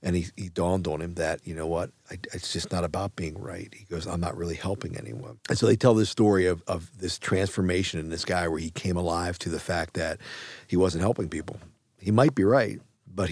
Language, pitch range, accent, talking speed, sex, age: English, 90-105 Hz, American, 245 wpm, male, 40-59